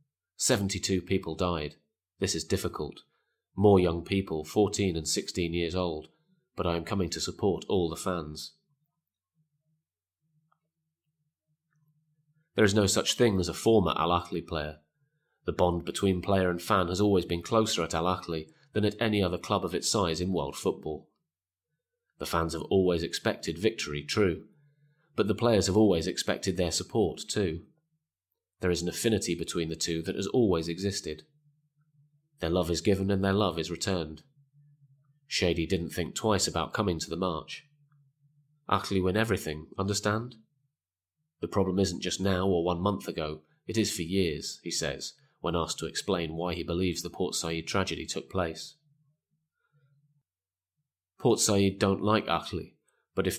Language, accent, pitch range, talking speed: English, British, 85-140 Hz, 155 wpm